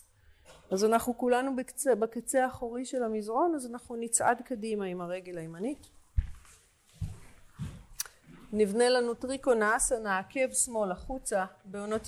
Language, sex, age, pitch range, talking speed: Hebrew, female, 40-59, 190-245 Hz, 115 wpm